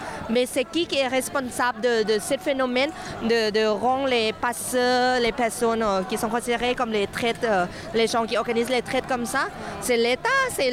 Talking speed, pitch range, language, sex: 195 wpm, 225-280 Hz, French, female